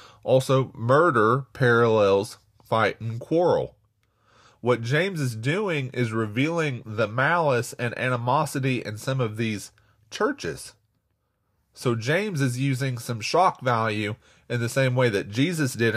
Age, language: 30-49, English